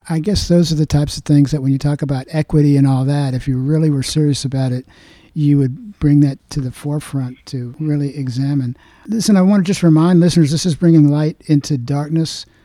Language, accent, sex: English, American, male